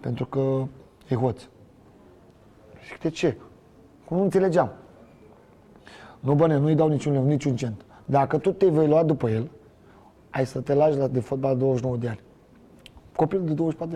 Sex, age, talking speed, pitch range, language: male, 30-49, 165 wpm, 120-160 Hz, Romanian